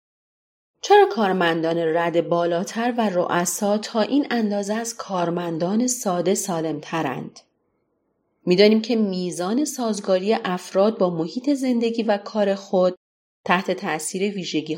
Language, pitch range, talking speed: Persian, 170-225 Hz, 120 wpm